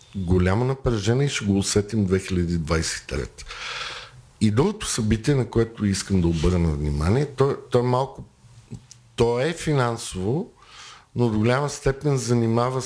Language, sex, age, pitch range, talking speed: Bulgarian, male, 50-69, 95-120 Hz, 130 wpm